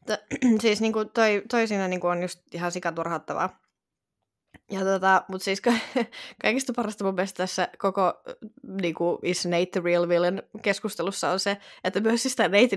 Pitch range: 175-220 Hz